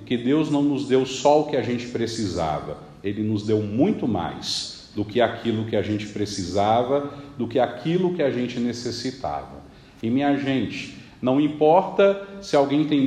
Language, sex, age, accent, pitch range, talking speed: Portuguese, male, 40-59, Brazilian, 110-155 Hz, 170 wpm